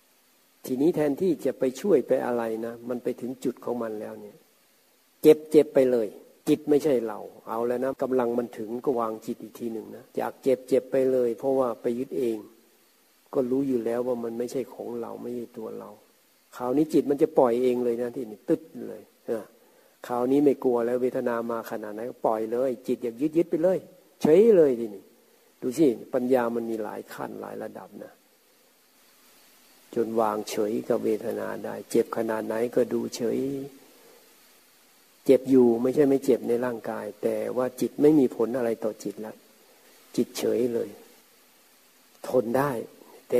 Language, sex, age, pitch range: Thai, male, 60-79, 115-135 Hz